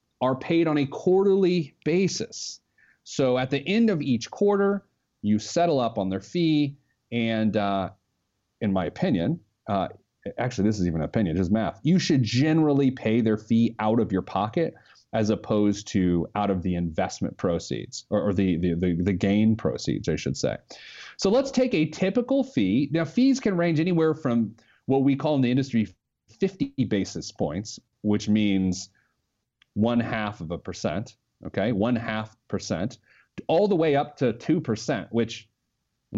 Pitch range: 105-155 Hz